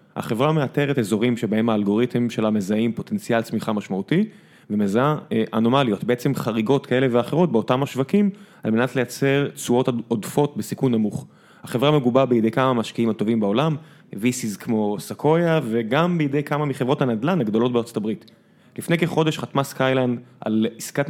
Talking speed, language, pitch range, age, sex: 140 wpm, Hebrew, 115-150 Hz, 20-39, male